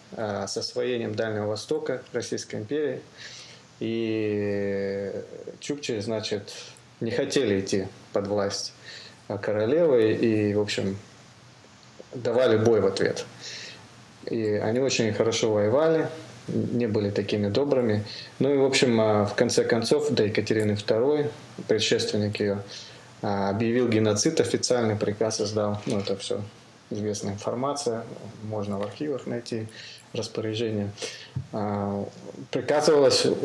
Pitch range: 105-125 Hz